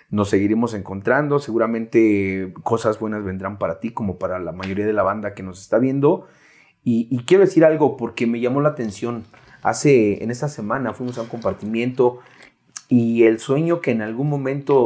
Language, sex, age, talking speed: Spanish, male, 30-49, 180 wpm